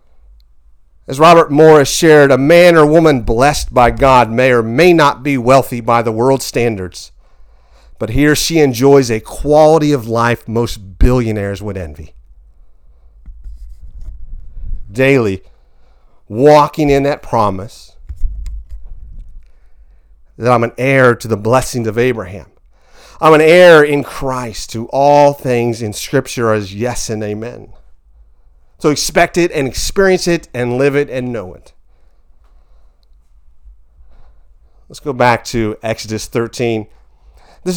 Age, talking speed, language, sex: 40-59, 130 wpm, English, male